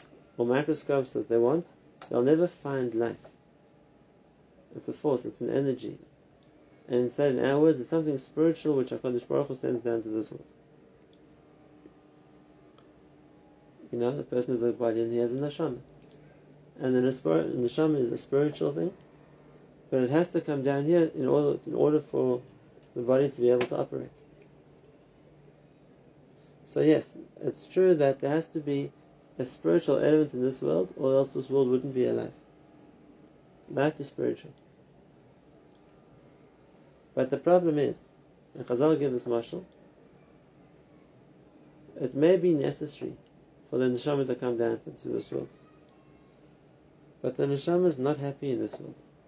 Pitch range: 125-155 Hz